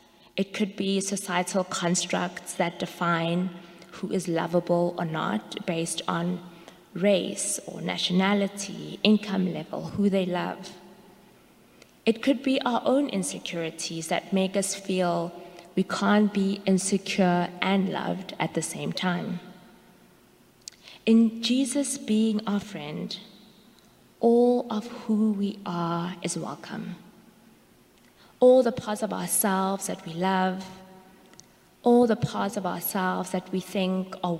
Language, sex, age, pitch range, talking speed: English, female, 20-39, 175-210 Hz, 125 wpm